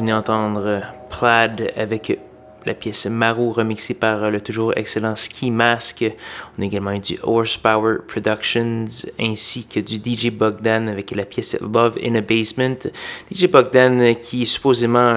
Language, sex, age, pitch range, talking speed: French, male, 20-39, 105-115 Hz, 155 wpm